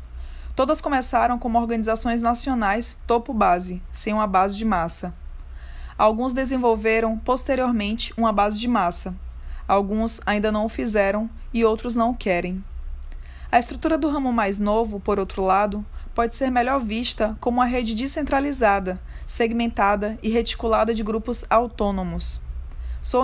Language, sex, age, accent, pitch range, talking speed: Portuguese, female, 20-39, Brazilian, 205-240 Hz, 135 wpm